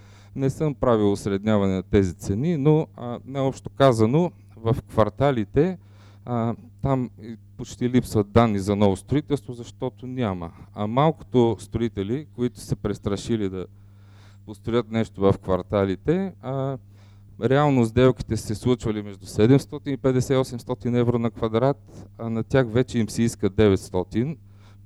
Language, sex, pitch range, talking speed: Bulgarian, male, 100-130 Hz, 130 wpm